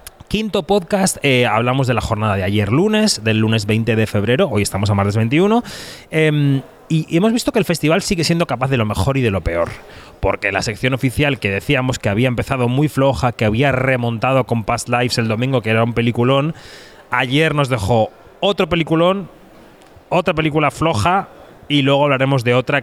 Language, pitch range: Spanish, 115-150 Hz